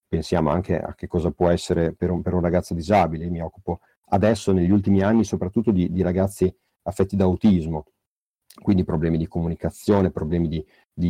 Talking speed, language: 180 wpm, Italian